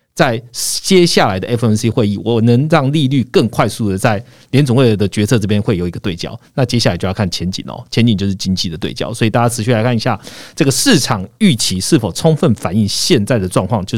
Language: Chinese